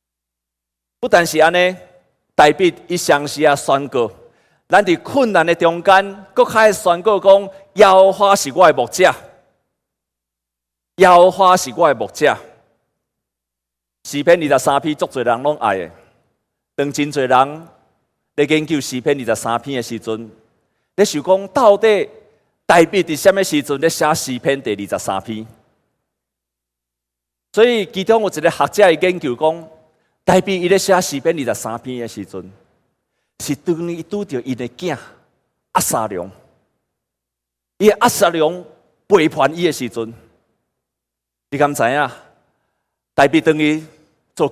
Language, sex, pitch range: Chinese, male, 115-180 Hz